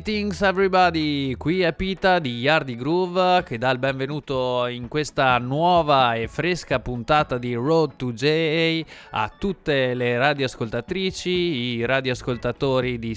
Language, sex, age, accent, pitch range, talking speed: Italian, male, 20-39, native, 120-155 Hz, 130 wpm